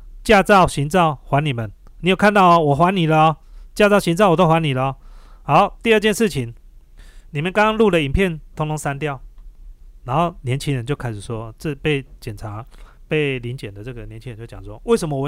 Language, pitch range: Chinese, 125-185 Hz